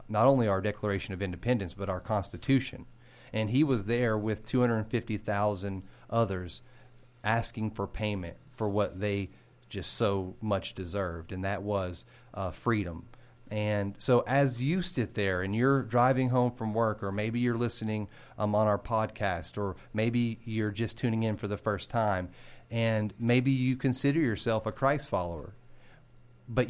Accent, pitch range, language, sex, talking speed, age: American, 100-125 Hz, English, male, 155 wpm, 40-59